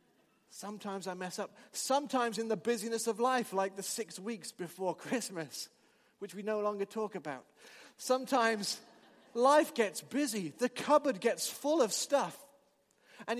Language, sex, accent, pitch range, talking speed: English, male, British, 180-235 Hz, 150 wpm